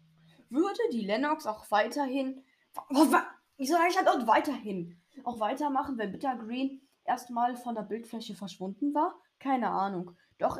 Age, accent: 10-29, German